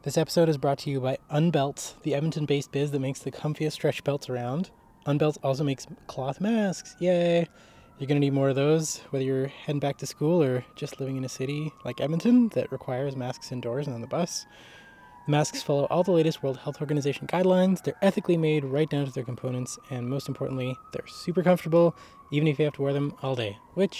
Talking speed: 215 wpm